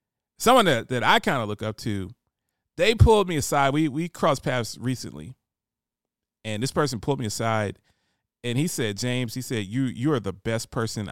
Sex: male